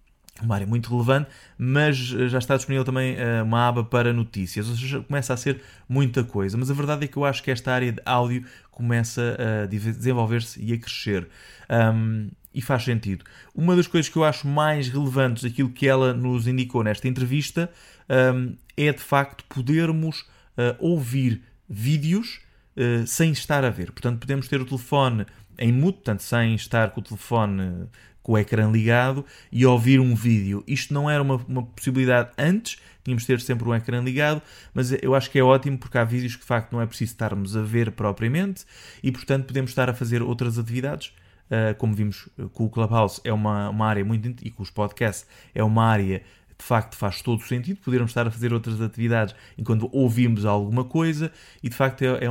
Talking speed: 190 wpm